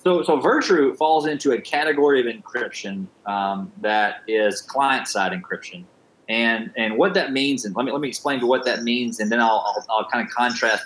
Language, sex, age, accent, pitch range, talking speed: English, male, 30-49, American, 110-145 Hz, 200 wpm